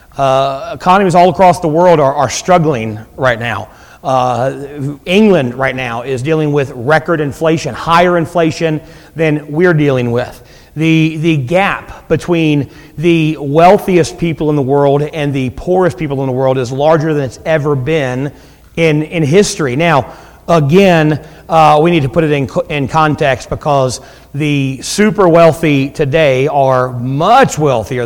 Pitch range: 135-165 Hz